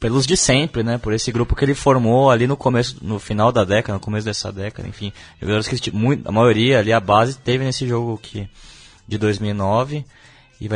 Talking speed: 185 wpm